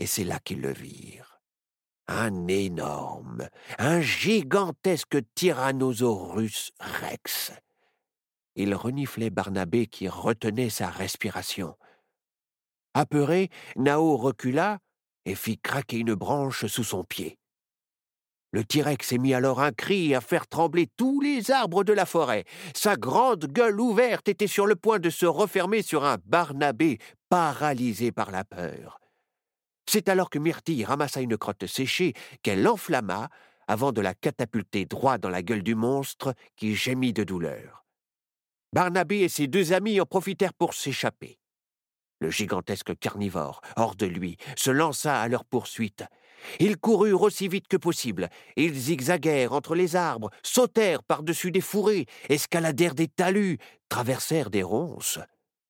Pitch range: 115-180 Hz